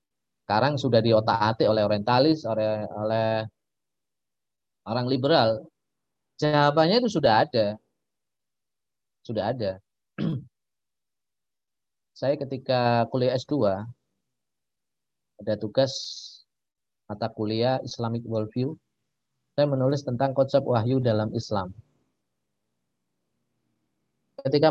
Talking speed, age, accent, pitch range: 80 wpm, 30-49, native, 115-150 Hz